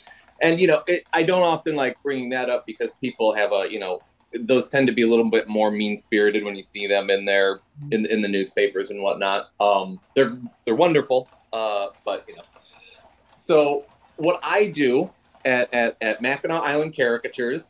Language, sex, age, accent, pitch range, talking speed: English, male, 30-49, American, 115-165 Hz, 190 wpm